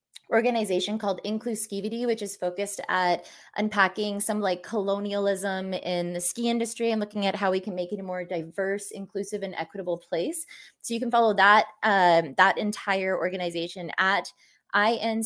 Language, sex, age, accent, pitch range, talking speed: English, female, 20-39, American, 180-220 Hz, 165 wpm